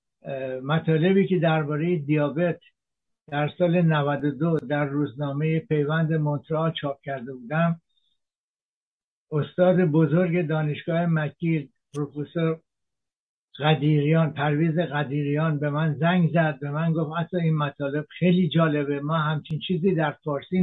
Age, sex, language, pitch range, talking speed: 60-79, male, Persian, 150-175 Hz, 115 wpm